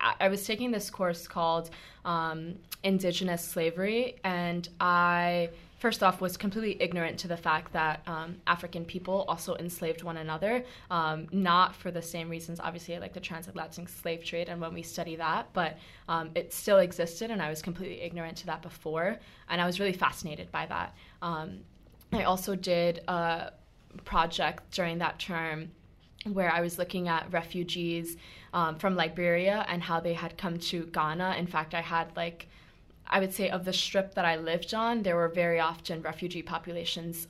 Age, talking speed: 20-39, 175 wpm